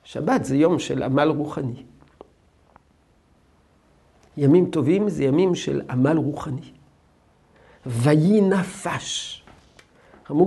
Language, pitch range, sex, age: Hebrew, 130-175 Hz, male, 50-69